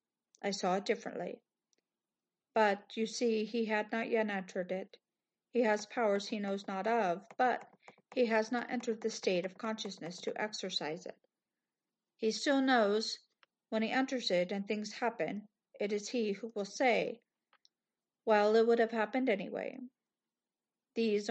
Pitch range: 205-235 Hz